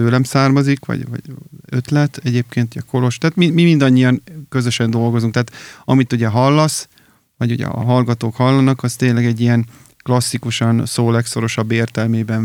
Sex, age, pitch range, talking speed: male, 30-49, 120-130 Hz, 150 wpm